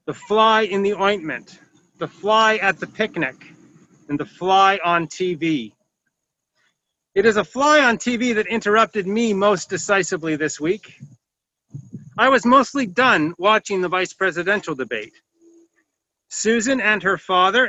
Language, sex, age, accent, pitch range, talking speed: English, male, 40-59, American, 180-225 Hz, 140 wpm